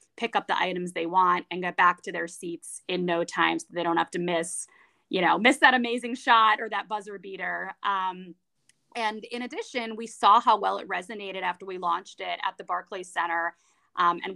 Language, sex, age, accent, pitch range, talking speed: English, female, 20-39, American, 170-200 Hz, 215 wpm